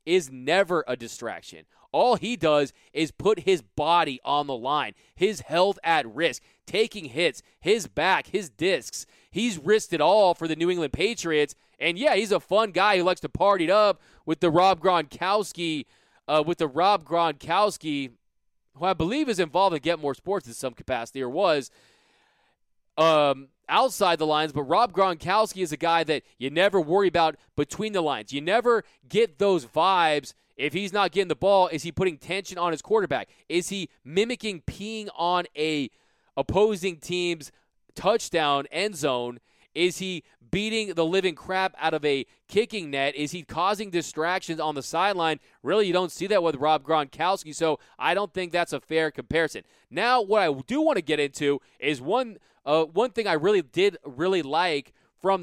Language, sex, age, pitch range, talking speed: English, male, 20-39, 150-195 Hz, 180 wpm